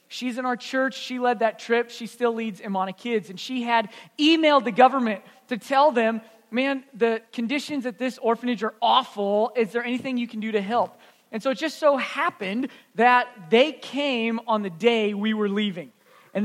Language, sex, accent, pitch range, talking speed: English, male, American, 215-265 Hz, 195 wpm